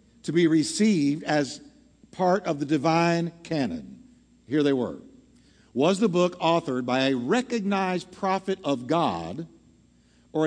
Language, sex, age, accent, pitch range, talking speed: English, male, 50-69, American, 120-190 Hz, 130 wpm